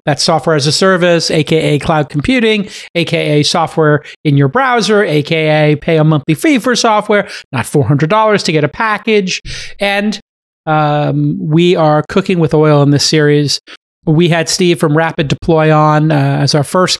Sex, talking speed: male, 175 wpm